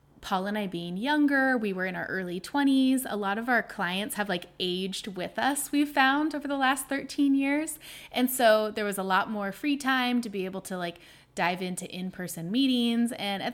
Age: 20-39